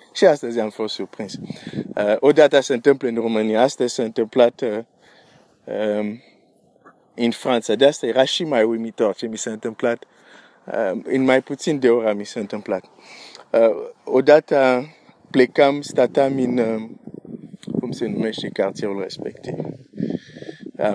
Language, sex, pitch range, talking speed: Romanian, male, 120-145 Hz, 140 wpm